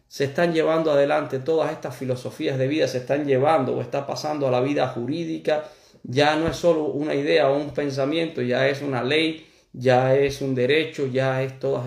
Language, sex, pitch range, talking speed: Spanish, male, 125-155 Hz, 195 wpm